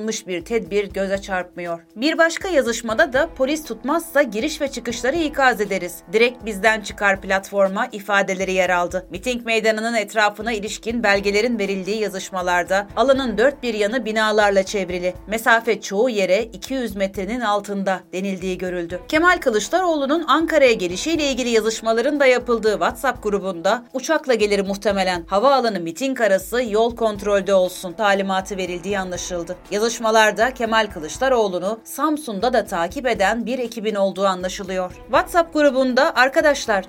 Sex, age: female, 30-49